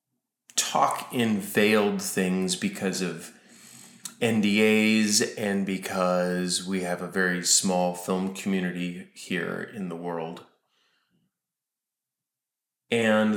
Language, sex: English, male